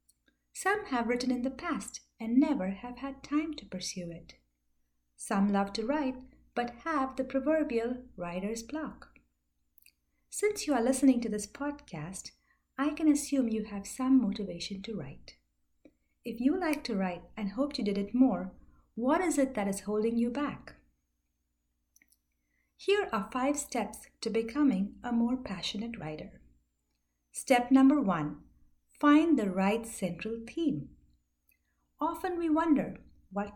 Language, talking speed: English, 145 wpm